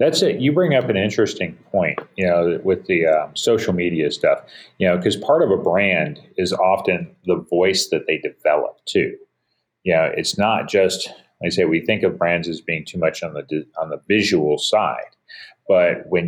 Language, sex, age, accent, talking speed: English, male, 40-59, American, 205 wpm